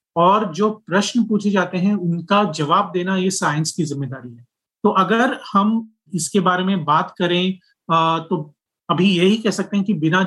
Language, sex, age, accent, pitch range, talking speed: Hindi, male, 30-49, native, 160-190 Hz, 180 wpm